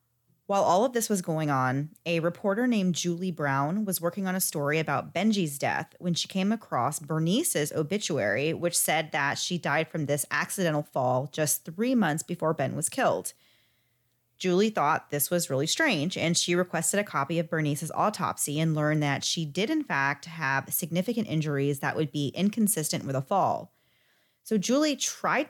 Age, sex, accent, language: 30-49, female, American, English